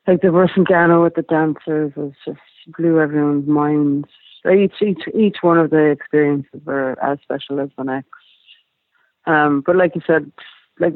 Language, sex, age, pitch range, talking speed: English, female, 60-79, 140-160 Hz, 170 wpm